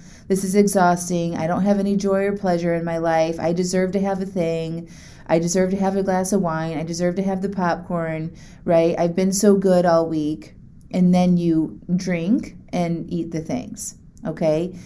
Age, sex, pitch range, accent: 30-49, female, 165-205 Hz, American